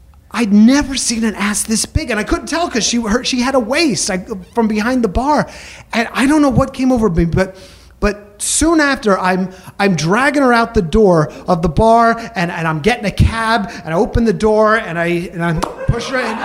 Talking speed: 225 wpm